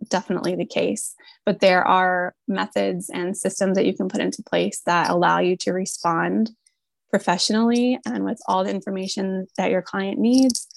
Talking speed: 165 wpm